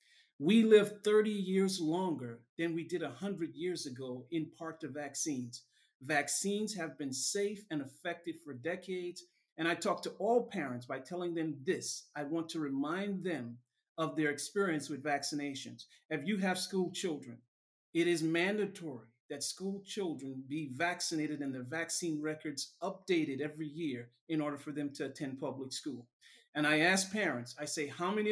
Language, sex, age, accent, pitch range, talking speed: English, male, 50-69, American, 140-175 Hz, 165 wpm